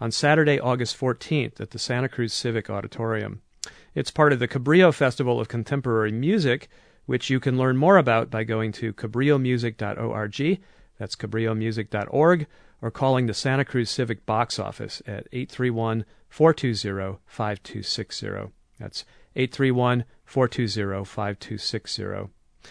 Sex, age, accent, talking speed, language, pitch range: male, 40-59, American, 115 wpm, English, 110-140 Hz